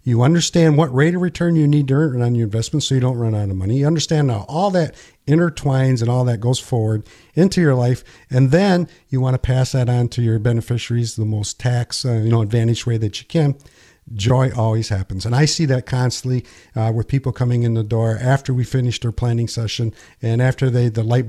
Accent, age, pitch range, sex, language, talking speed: American, 50-69, 120-145 Hz, male, English, 230 wpm